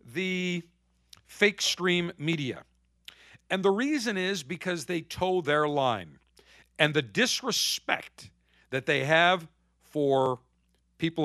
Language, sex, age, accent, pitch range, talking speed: English, male, 50-69, American, 135-195 Hz, 110 wpm